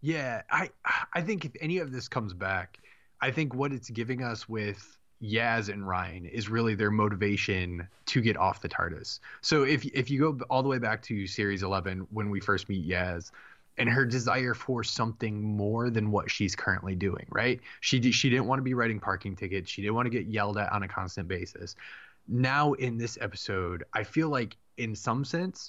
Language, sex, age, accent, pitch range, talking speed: English, male, 20-39, American, 95-120 Hz, 210 wpm